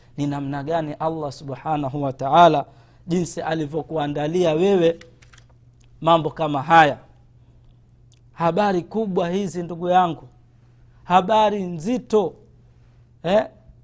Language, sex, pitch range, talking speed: Swahili, male, 130-195 Hz, 95 wpm